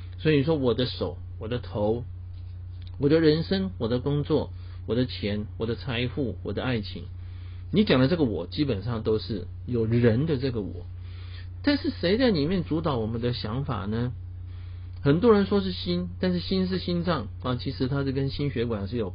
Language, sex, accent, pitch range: Chinese, male, native, 90-135 Hz